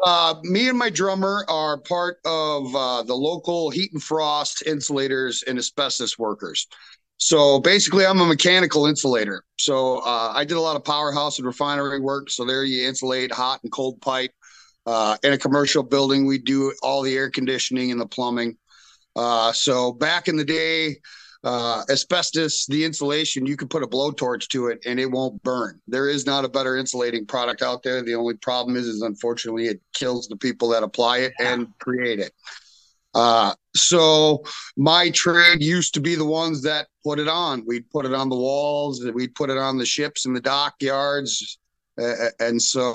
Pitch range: 125-155 Hz